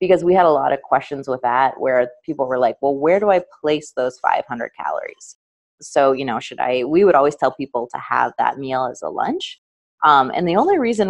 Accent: American